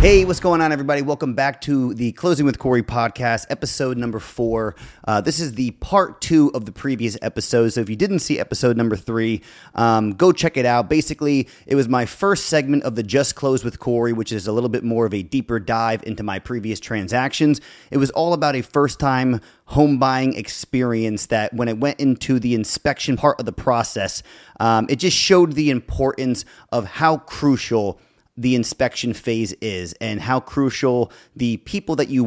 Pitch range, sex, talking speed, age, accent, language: 115-140 Hz, male, 195 wpm, 30-49, American, English